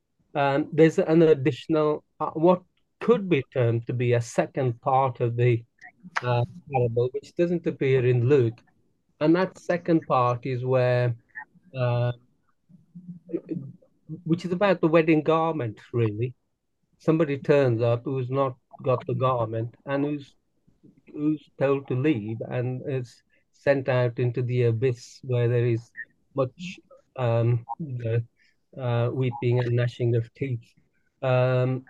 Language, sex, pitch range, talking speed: English, male, 120-155 Hz, 135 wpm